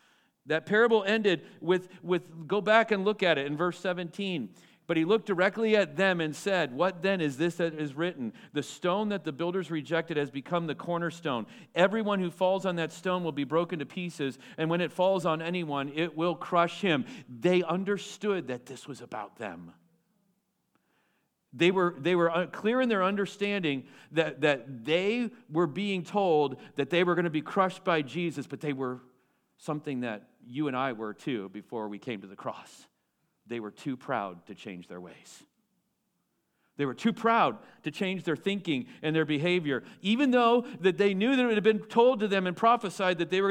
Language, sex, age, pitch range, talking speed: Finnish, male, 40-59, 145-195 Hz, 195 wpm